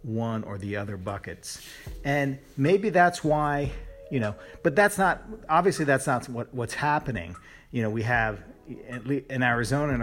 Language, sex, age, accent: English, male, 40-59, American